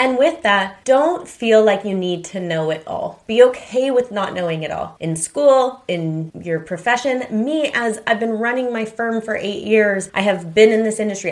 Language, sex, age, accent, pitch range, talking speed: English, female, 30-49, American, 180-225 Hz, 210 wpm